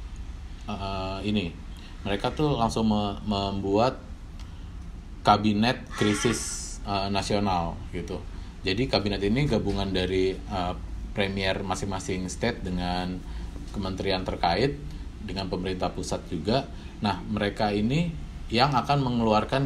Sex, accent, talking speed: male, native, 105 wpm